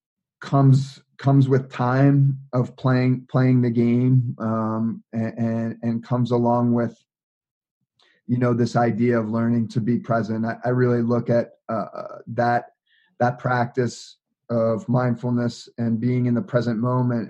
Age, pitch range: 30-49, 115-125 Hz